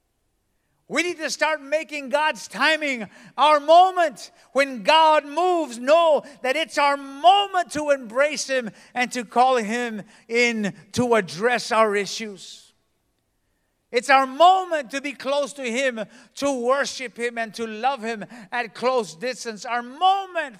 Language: English